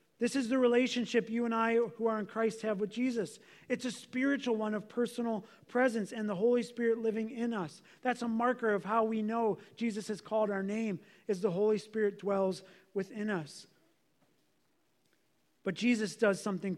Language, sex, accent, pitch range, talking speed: English, male, American, 215-255 Hz, 180 wpm